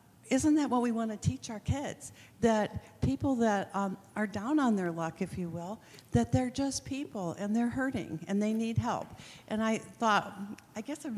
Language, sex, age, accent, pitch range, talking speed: English, female, 60-79, American, 185-230 Hz, 205 wpm